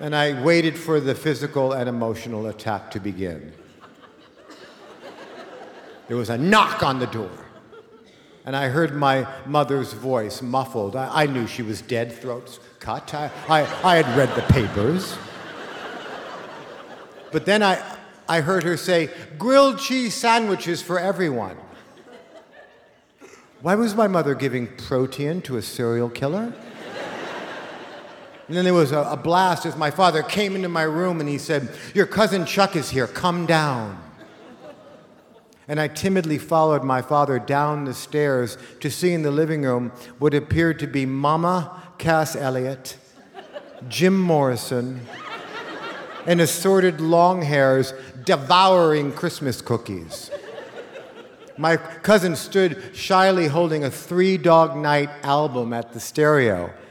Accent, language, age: American, English, 60-79